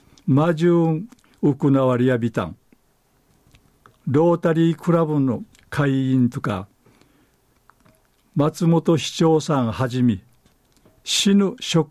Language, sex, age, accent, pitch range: Japanese, male, 60-79, native, 125-165 Hz